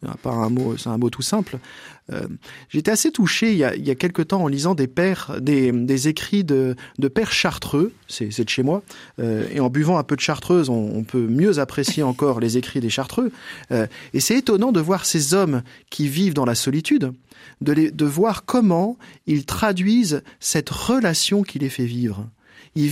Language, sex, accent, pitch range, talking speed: French, male, French, 130-180 Hz, 210 wpm